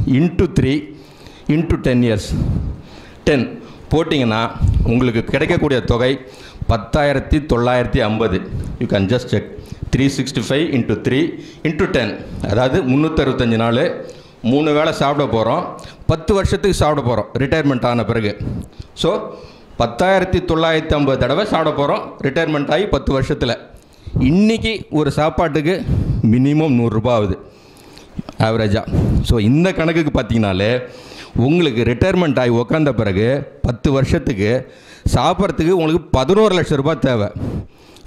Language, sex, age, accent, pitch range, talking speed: Tamil, male, 50-69, native, 115-160 Hz, 115 wpm